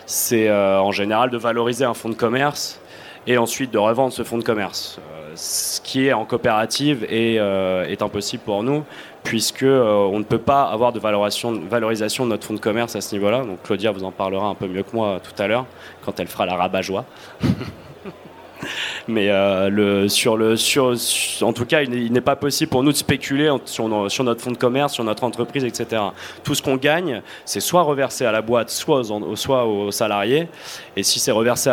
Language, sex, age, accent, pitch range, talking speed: French, male, 20-39, French, 100-125 Hz, 215 wpm